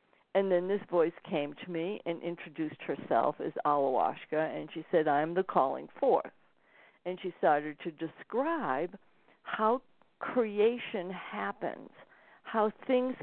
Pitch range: 170-215 Hz